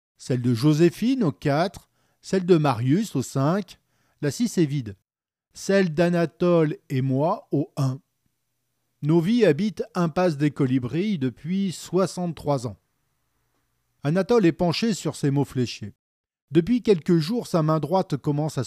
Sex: male